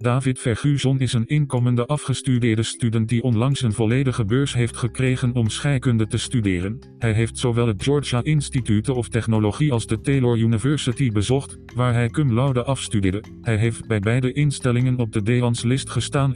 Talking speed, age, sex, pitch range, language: 165 wpm, 40-59, male, 115-130 Hz, Dutch